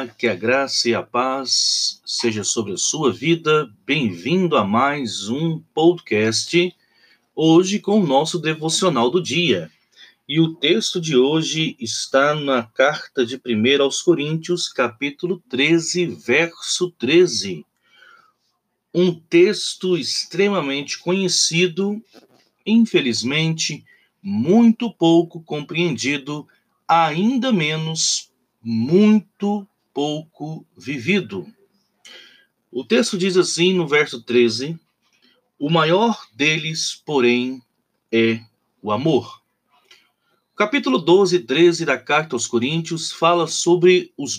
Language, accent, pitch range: Portuguese, Brazilian, 140-190 Hz